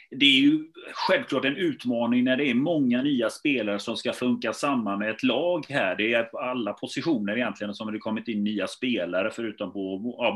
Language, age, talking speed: Swedish, 30-49, 205 wpm